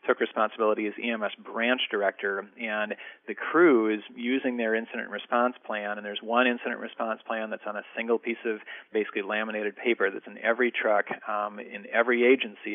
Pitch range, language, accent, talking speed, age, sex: 105-120 Hz, English, American, 180 wpm, 40-59, male